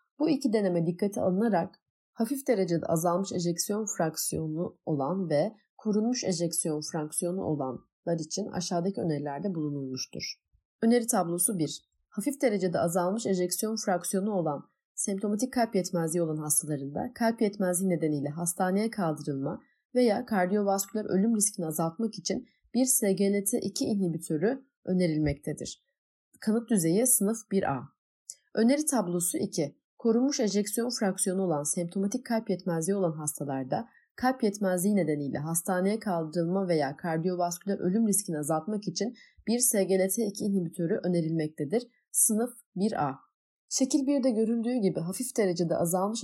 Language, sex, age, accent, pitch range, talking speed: Turkish, female, 30-49, native, 165-220 Hz, 115 wpm